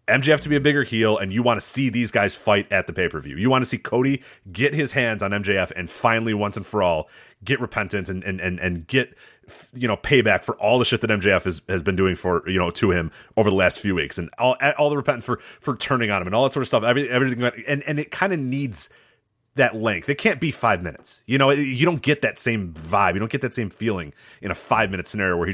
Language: English